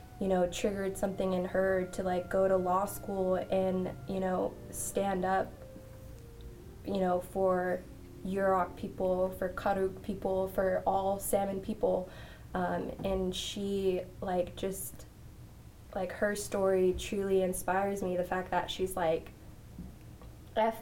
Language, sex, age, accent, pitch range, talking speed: English, female, 20-39, American, 180-195 Hz, 135 wpm